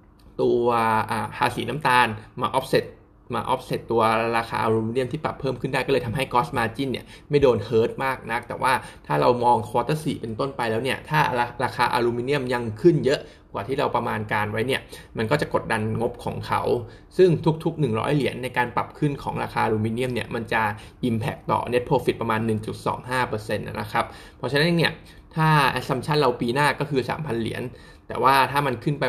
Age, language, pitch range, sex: 20-39, Thai, 115-140 Hz, male